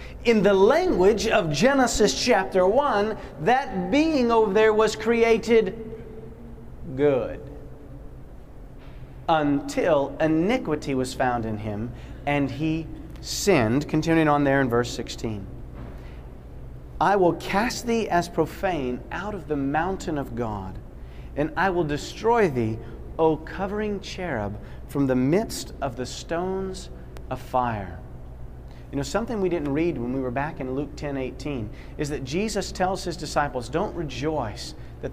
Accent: American